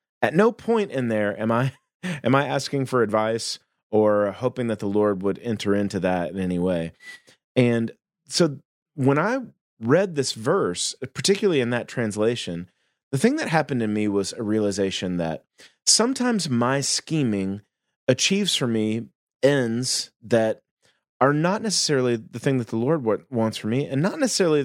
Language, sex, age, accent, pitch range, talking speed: English, male, 30-49, American, 100-145 Hz, 165 wpm